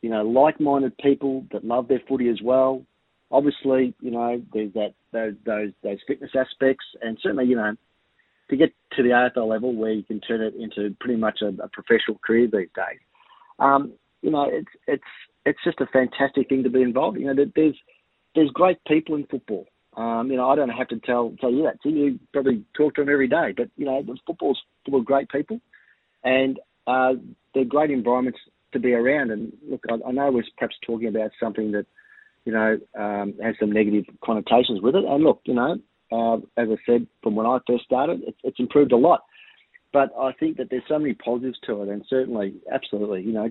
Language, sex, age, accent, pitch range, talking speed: English, male, 40-59, Australian, 115-140 Hz, 210 wpm